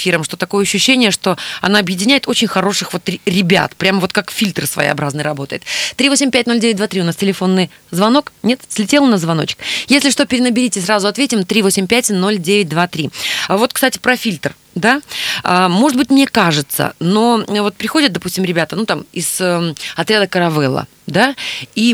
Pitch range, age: 175-230 Hz, 20-39